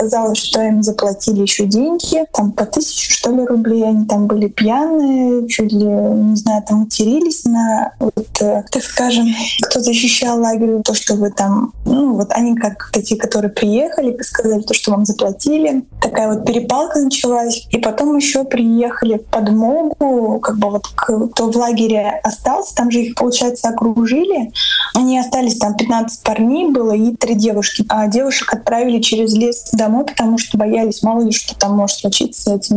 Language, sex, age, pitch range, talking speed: Russian, female, 20-39, 215-245 Hz, 170 wpm